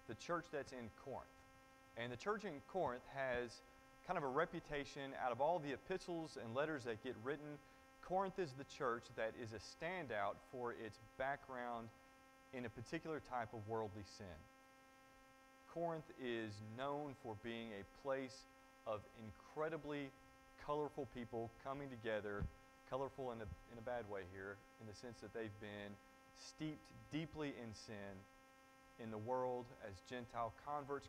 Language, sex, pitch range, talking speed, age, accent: English, male, 115-145 Hz, 155 wpm, 30-49, American